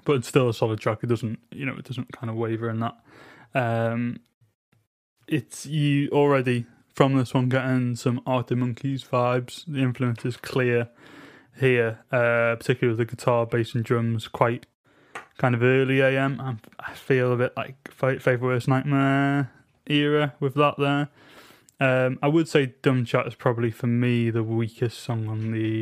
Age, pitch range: 20-39, 120-140 Hz